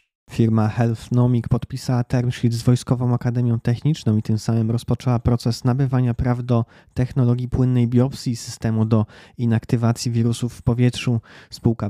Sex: male